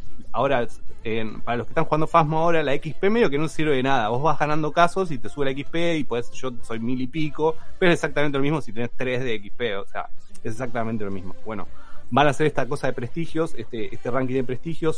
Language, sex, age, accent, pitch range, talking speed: Spanish, male, 30-49, Argentinian, 115-155 Hz, 250 wpm